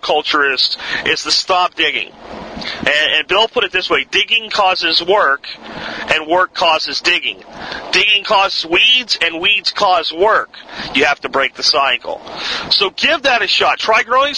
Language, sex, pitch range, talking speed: French, male, 160-215 Hz, 165 wpm